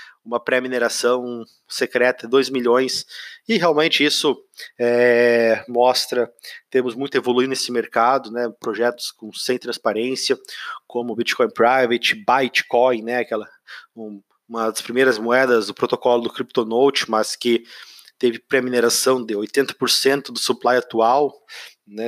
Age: 20-39